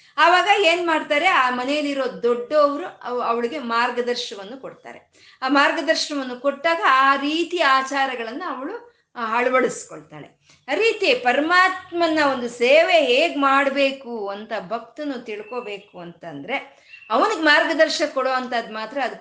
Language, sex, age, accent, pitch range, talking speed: Kannada, female, 20-39, native, 210-295 Hz, 100 wpm